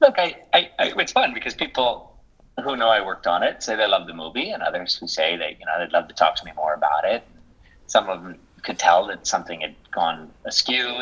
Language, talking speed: English, 245 wpm